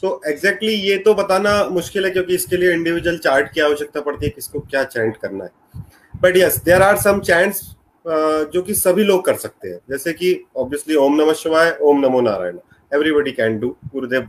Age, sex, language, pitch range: 30-49, male, Hindi, 150-195 Hz